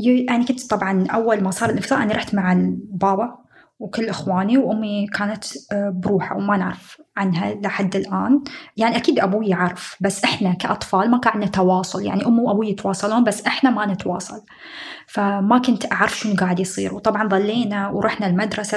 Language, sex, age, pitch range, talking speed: Arabic, female, 20-39, 195-235 Hz, 160 wpm